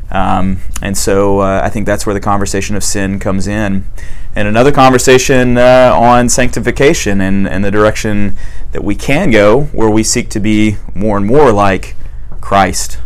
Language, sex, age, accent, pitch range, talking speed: English, male, 30-49, American, 100-115 Hz, 175 wpm